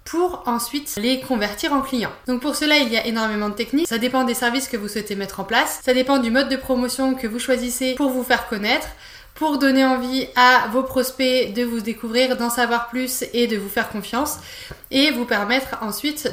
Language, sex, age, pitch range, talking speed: French, female, 20-39, 240-280 Hz, 215 wpm